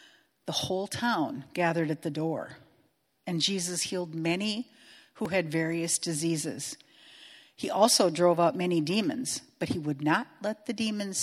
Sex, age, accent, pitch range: female, 50-69, American, 150-200 Hz